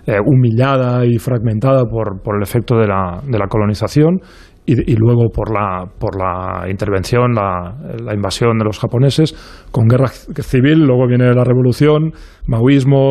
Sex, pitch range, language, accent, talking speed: male, 120-145 Hz, Spanish, Spanish, 160 wpm